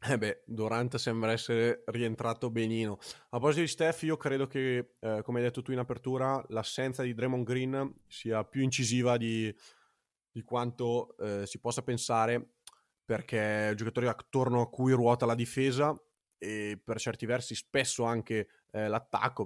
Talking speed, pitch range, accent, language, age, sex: 165 wpm, 110-130 Hz, native, Italian, 20-39, male